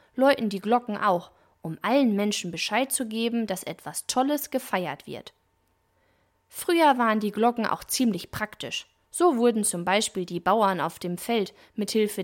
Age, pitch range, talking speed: 20-39, 180-255 Hz, 160 wpm